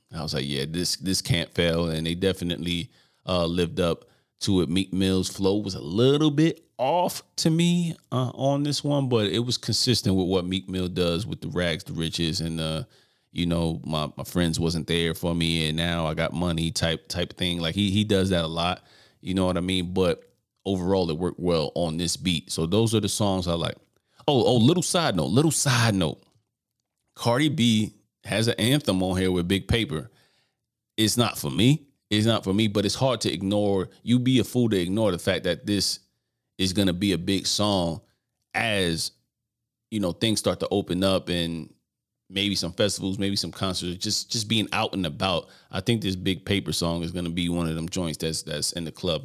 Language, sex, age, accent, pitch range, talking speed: English, male, 30-49, American, 85-110 Hz, 215 wpm